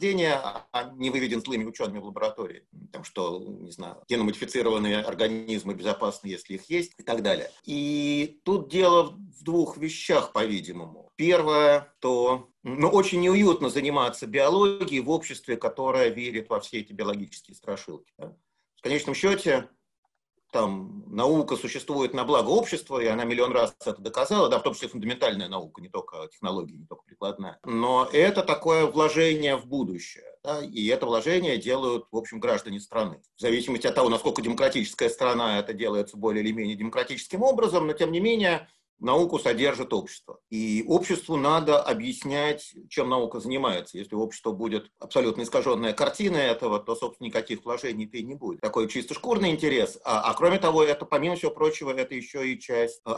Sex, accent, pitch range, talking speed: male, native, 115-180 Hz, 160 wpm